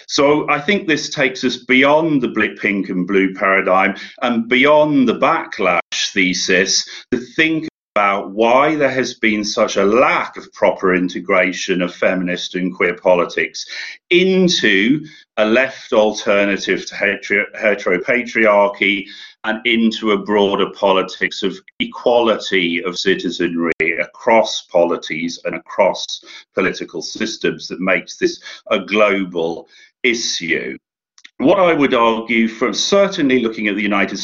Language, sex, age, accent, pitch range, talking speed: English, male, 40-59, British, 95-150 Hz, 125 wpm